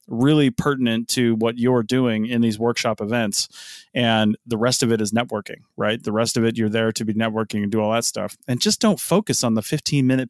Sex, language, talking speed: male, English, 225 wpm